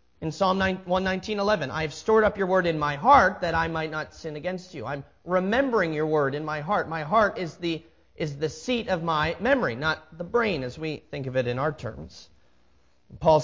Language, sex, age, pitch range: English, male, 30-49, 135-180 Hz